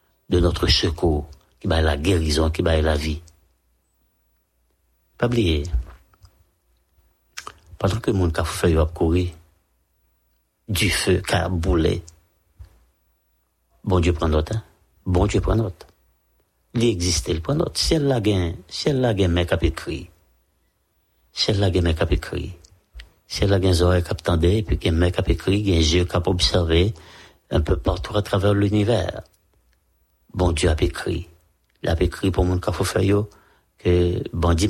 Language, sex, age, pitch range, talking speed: English, male, 60-79, 80-100 Hz, 170 wpm